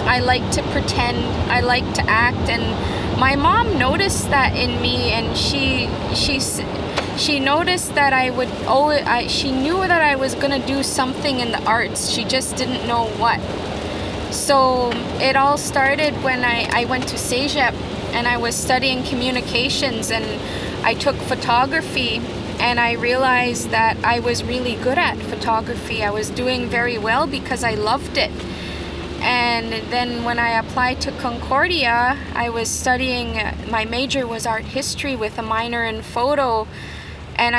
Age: 20-39